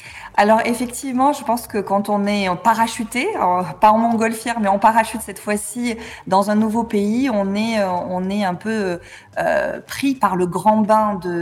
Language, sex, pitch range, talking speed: French, female, 185-225 Hz, 175 wpm